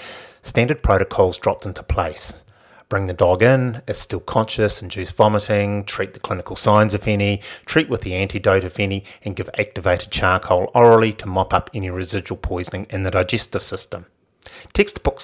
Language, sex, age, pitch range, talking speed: English, male, 30-49, 90-110 Hz, 165 wpm